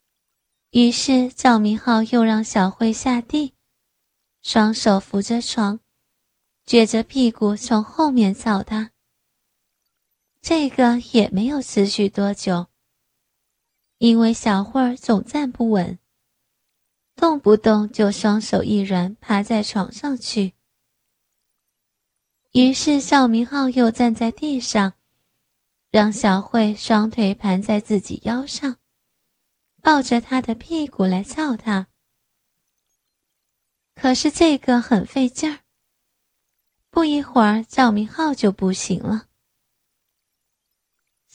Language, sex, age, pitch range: Chinese, female, 20-39, 210-260 Hz